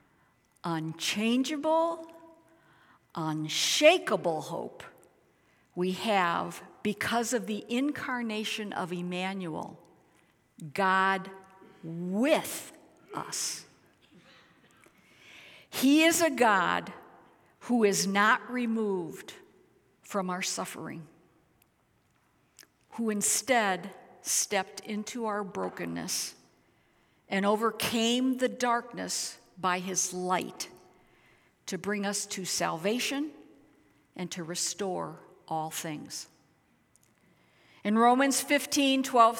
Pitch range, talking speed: 180-255 Hz, 80 wpm